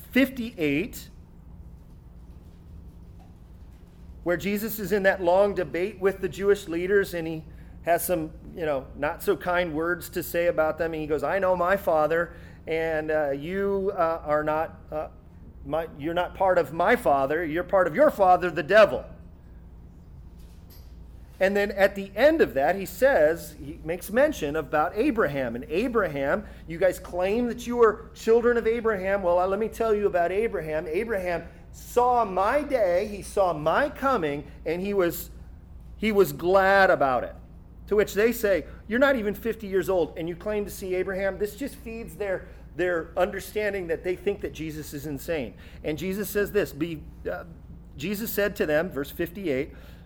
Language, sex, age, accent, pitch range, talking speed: English, male, 40-59, American, 155-205 Hz, 170 wpm